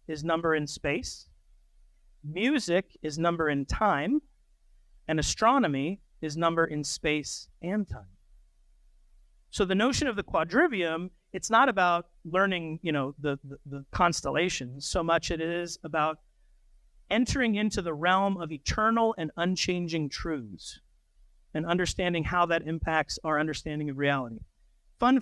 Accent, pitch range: American, 150-195 Hz